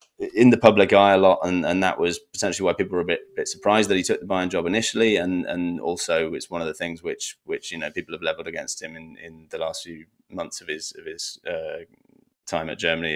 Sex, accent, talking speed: male, British, 255 wpm